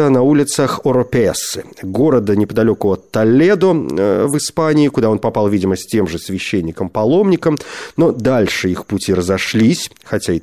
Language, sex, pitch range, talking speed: Russian, male, 105-150 Hz, 140 wpm